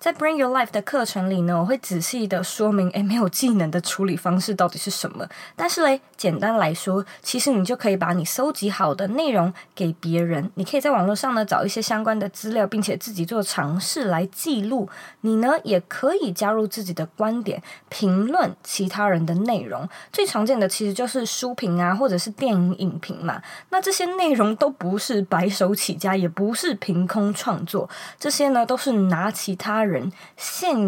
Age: 20-39